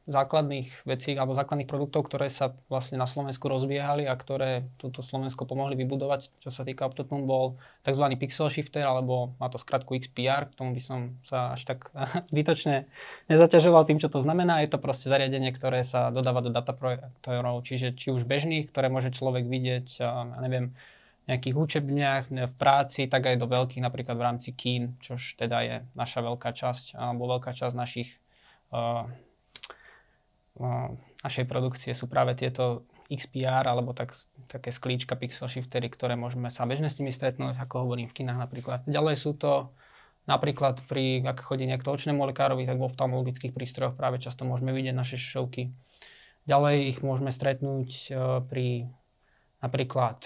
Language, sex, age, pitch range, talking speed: Slovak, male, 20-39, 125-135 Hz, 160 wpm